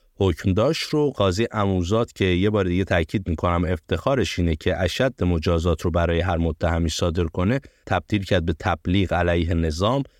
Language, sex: Persian, male